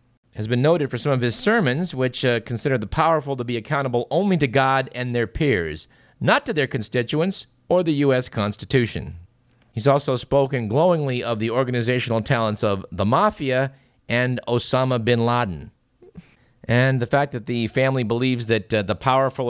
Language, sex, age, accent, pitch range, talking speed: English, male, 40-59, American, 110-130 Hz, 170 wpm